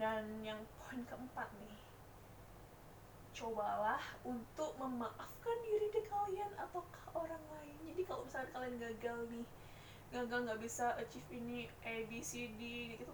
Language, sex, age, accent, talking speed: Indonesian, female, 20-39, native, 135 wpm